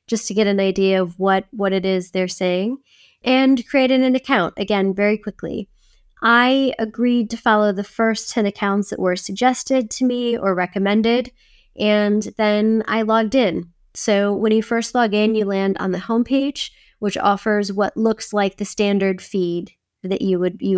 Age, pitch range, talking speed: 20-39, 185-225 Hz, 175 wpm